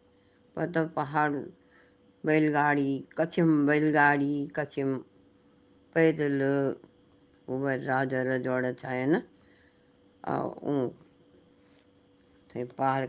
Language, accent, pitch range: Hindi, native, 125-155 Hz